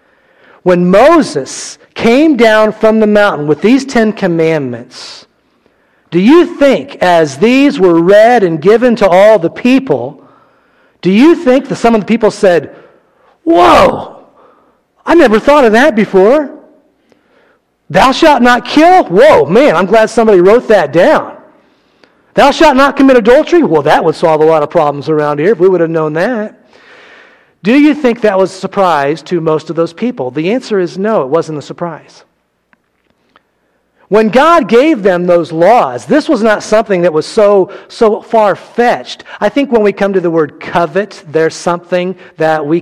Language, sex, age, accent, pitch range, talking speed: English, male, 40-59, American, 170-245 Hz, 170 wpm